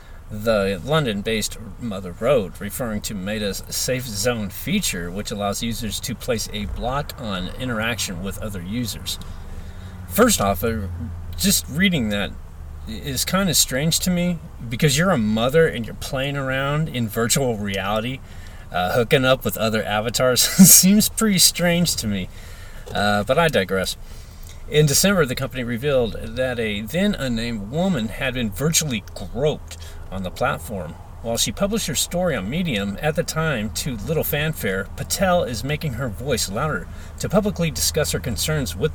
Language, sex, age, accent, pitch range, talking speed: English, male, 30-49, American, 90-140 Hz, 155 wpm